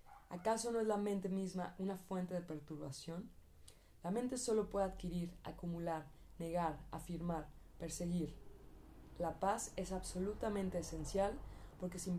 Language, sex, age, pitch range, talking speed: Spanish, female, 20-39, 160-190 Hz, 130 wpm